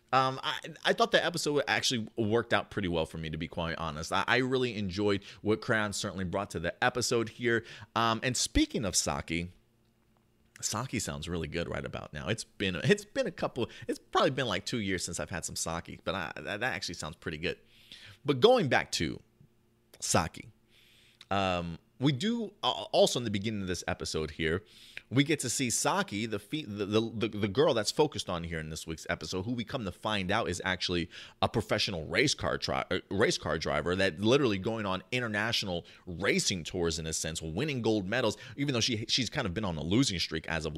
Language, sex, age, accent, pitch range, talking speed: English, male, 30-49, American, 85-120 Hz, 210 wpm